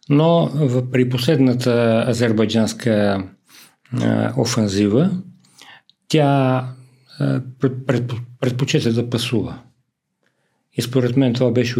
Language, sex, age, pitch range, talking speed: Bulgarian, male, 50-69, 115-135 Hz, 75 wpm